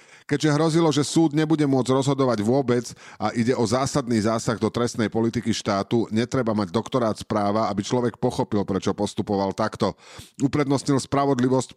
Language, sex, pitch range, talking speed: Slovak, male, 100-120 Hz, 150 wpm